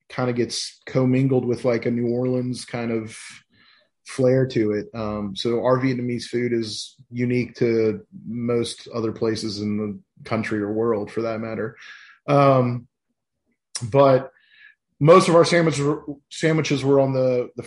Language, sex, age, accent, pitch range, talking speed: English, male, 30-49, American, 110-130 Hz, 155 wpm